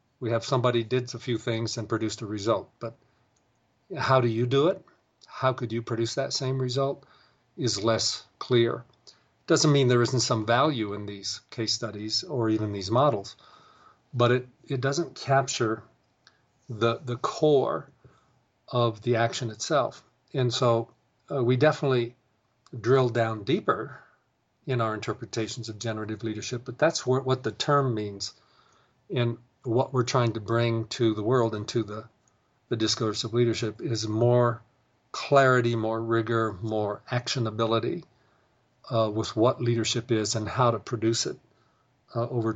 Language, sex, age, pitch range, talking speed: English, male, 40-59, 110-125 Hz, 150 wpm